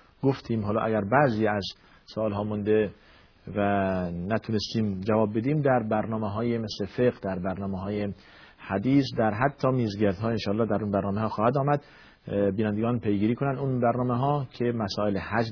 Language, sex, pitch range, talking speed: Persian, male, 100-125 Hz, 160 wpm